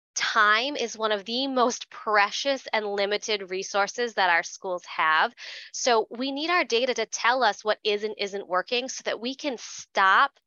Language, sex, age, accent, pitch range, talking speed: English, female, 20-39, American, 190-230 Hz, 185 wpm